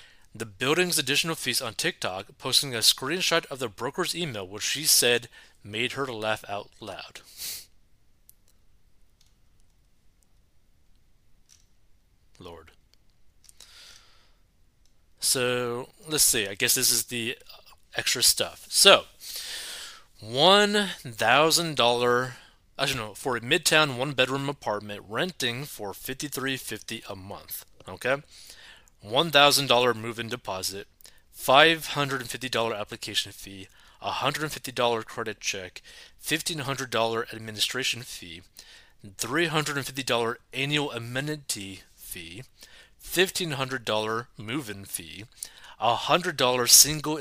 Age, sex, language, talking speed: 30-49, male, English, 90 wpm